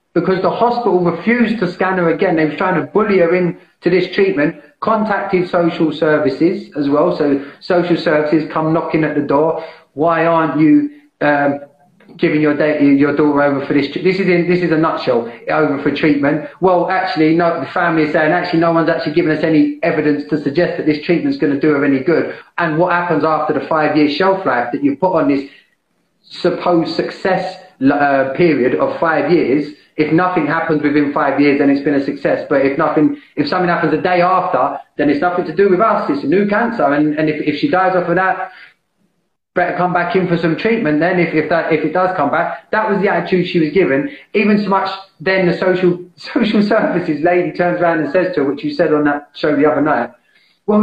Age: 30-49